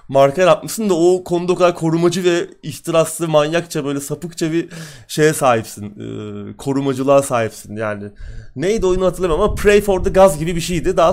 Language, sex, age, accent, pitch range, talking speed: Turkish, male, 30-49, native, 120-180 Hz, 165 wpm